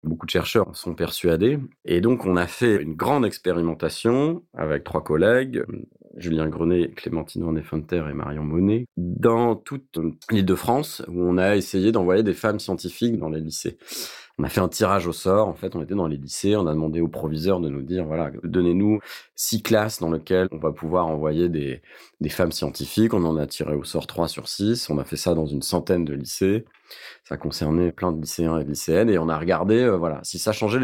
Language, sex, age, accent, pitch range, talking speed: French, male, 30-49, French, 80-110 Hz, 210 wpm